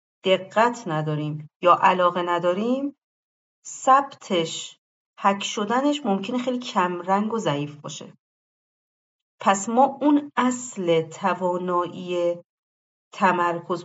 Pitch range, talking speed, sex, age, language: 175-245 Hz, 85 wpm, female, 40-59, Persian